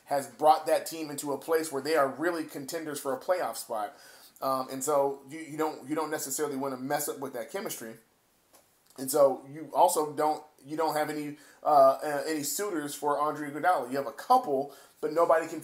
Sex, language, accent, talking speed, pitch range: male, English, American, 210 wpm, 135-160 Hz